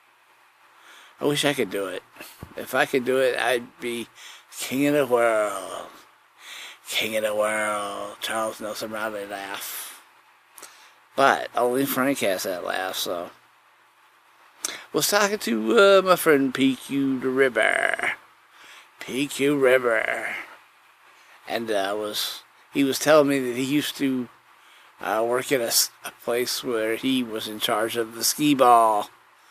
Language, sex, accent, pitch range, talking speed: English, male, American, 110-140 Hz, 140 wpm